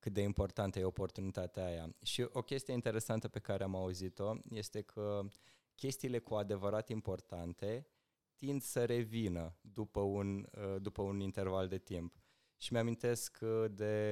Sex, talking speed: male, 140 wpm